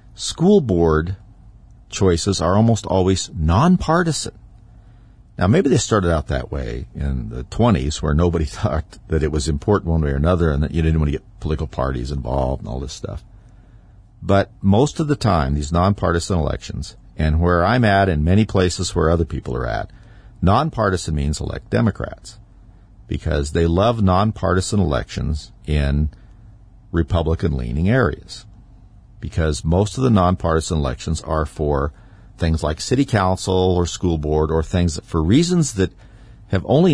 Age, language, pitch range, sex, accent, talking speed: 50-69, English, 80-110 Hz, male, American, 160 wpm